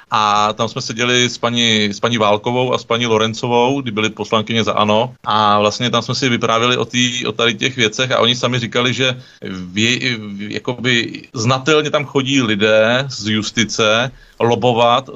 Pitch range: 120-140 Hz